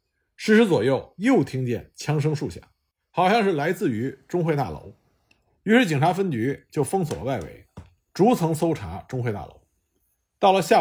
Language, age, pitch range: Chinese, 50-69, 115-175 Hz